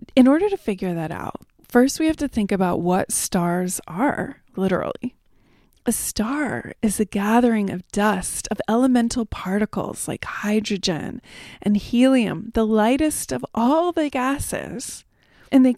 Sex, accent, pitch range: female, American, 205-265 Hz